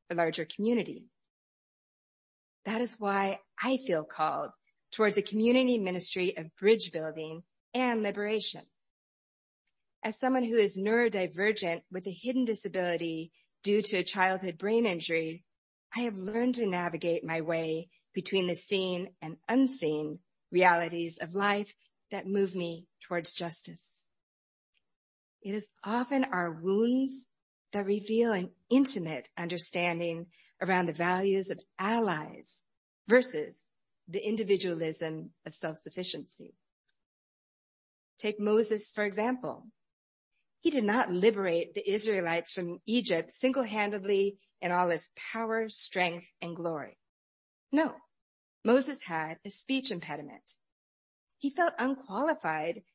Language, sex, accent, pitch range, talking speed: English, female, American, 170-225 Hz, 115 wpm